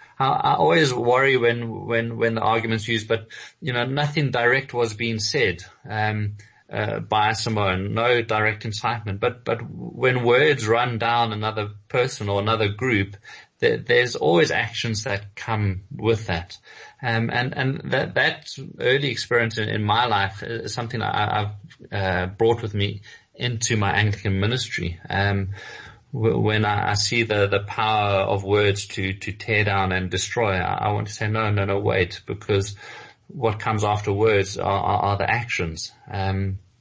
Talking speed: 165 wpm